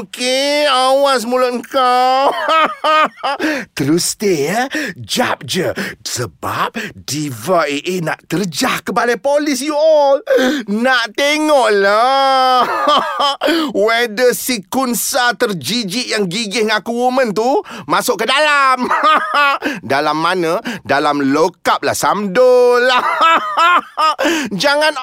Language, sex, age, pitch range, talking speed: Malay, male, 30-49, 245-300 Hz, 100 wpm